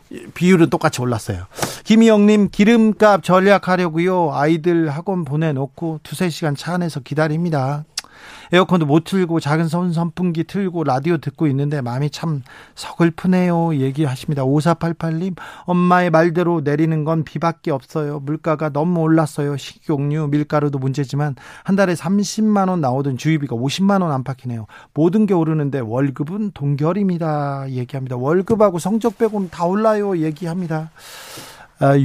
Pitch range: 140-180 Hz